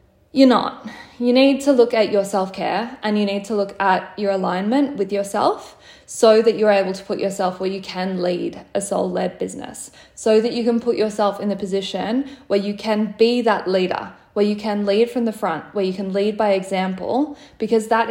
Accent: Australian